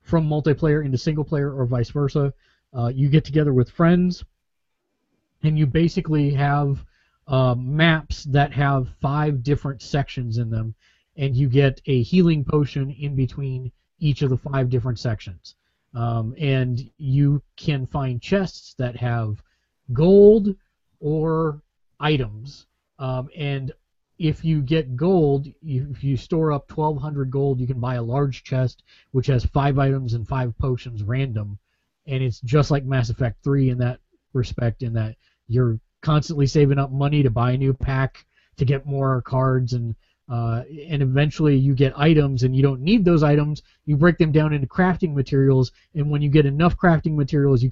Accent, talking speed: American, 165 wpm